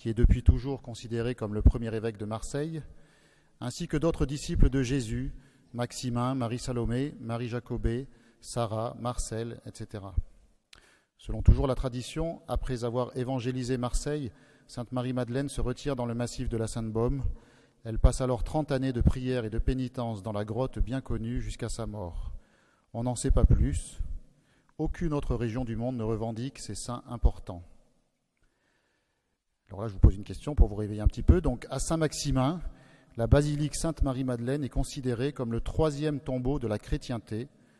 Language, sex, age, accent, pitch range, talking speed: French, male, 40-59, French, 110-135 Hz, 165 wpm